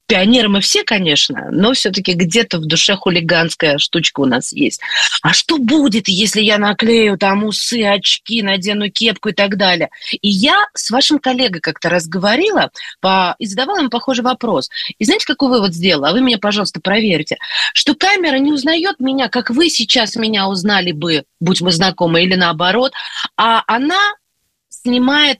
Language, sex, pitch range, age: Russian, female, 195-260 Hz, 30-49